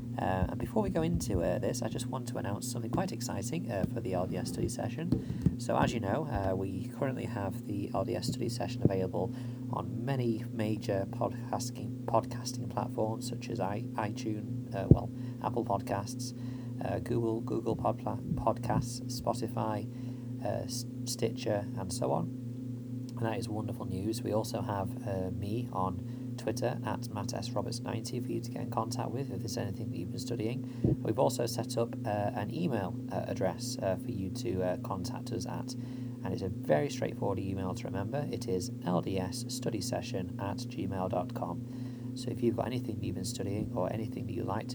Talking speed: 175 wpm